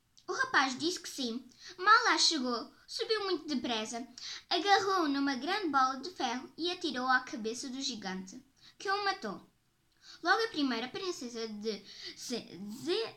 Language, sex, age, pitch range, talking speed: Portuguese, male, 20-39, 250-340 Hz, 145 wpm